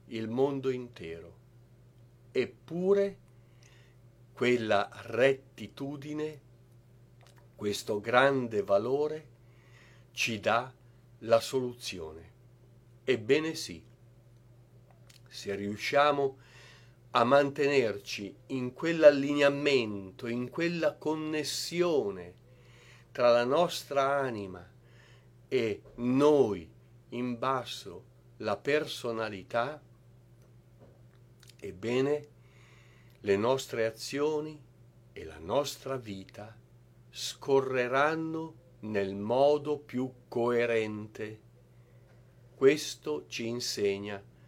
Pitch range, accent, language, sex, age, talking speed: 115-130 Hz, native, Italian, male, 50-69, 65 wpm